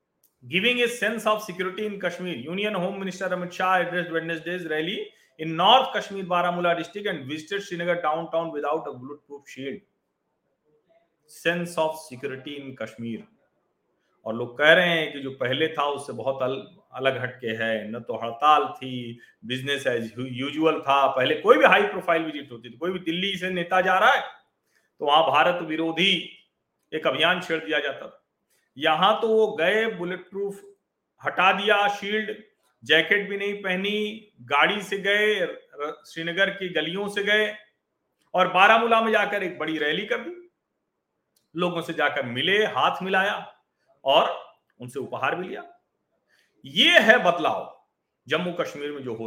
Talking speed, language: 145 wpm, Hindi